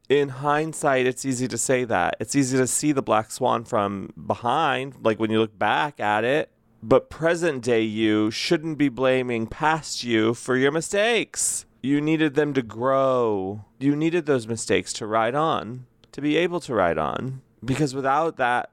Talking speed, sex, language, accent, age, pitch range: 180 wpm, male, English, American, 30-49, 110-140 Hz